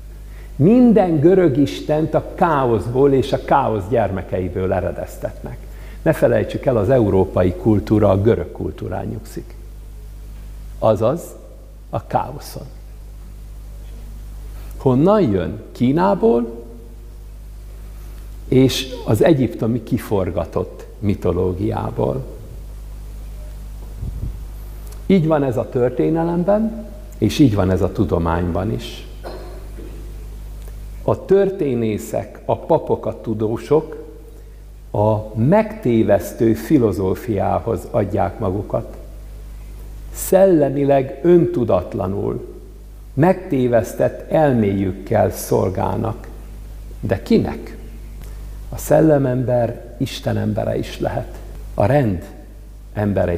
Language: Hungarian